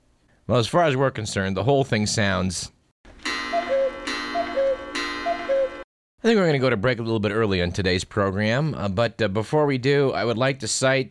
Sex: male